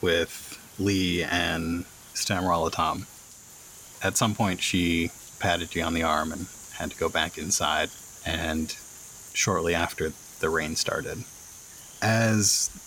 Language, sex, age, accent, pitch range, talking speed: English, male, 30-49, American, 85-110 Hz, 125 wpm